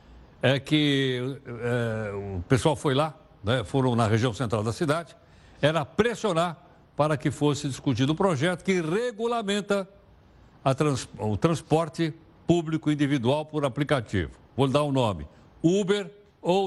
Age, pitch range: 60-79, 115-165 Hz